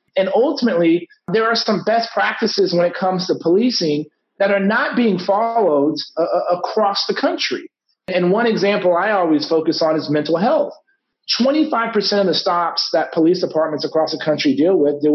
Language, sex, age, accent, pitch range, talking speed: English, male, 40-59, American, 155-210 Hz, 175 wpm